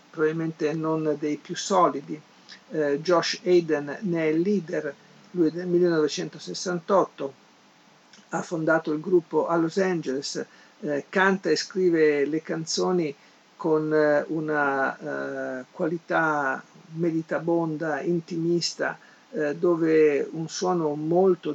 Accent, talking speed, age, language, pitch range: native, 110 wpm, 50-69, Italian, 155-185 Hz